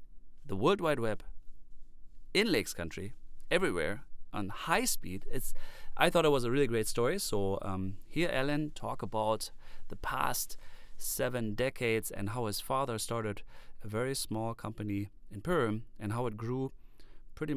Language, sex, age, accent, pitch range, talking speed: English, male, 30-49, German, 95-145 Hz, 155 wpm